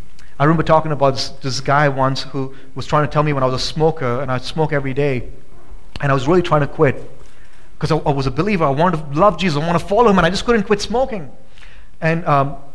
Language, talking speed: English, 255 wpm